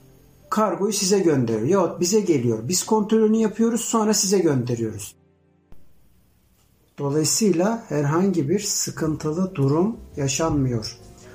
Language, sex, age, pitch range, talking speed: Turkish, male, 60-79, 145-205 Hz, 95 wpm